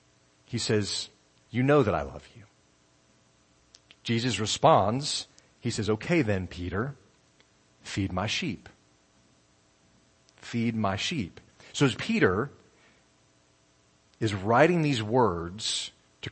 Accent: American